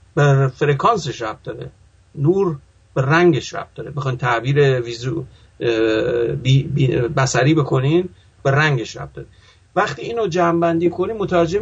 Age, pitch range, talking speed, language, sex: 50-69, 135-170 Hz, 115 wpm, English, male